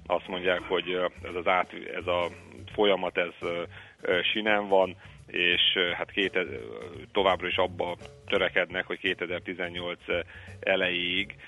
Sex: male